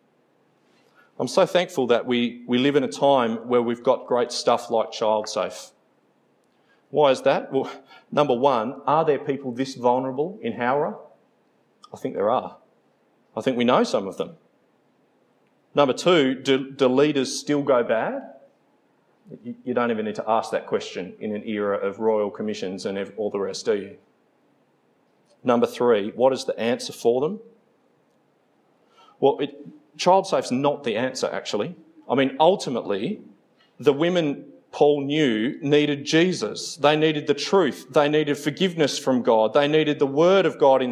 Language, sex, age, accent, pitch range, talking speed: English, male, 30-49, Australian, 130-165 Hz, 165 wpm